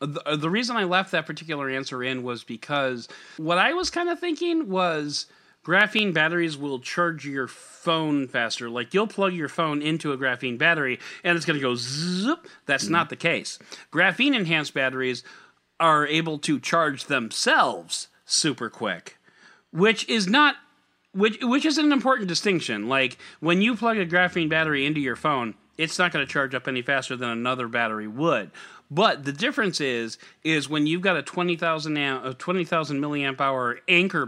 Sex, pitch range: male, 130-180 Hz